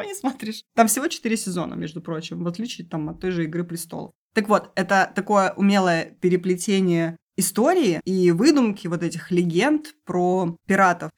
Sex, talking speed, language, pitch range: female, 160 wpm, Russian, 175-215 Hz